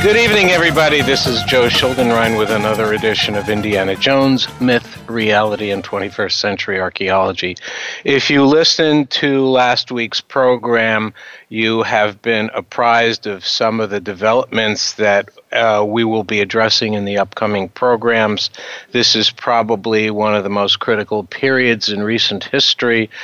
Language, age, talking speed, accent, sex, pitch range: English, 60-79, 145 wpm, American, male, 105-125 Hz